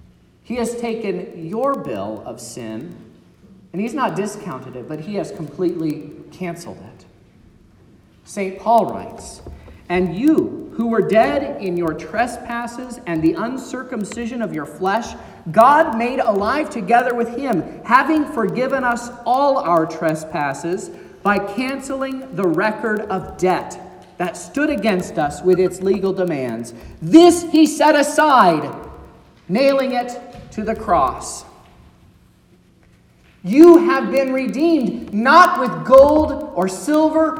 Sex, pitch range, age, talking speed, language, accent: male, 170-265 Hz, 40-59, 125 wpm, English, American